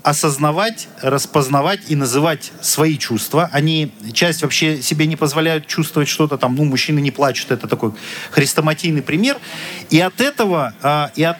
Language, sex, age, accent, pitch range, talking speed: Russian, male, 40-59, native, 150-180 Hz, 135 wpm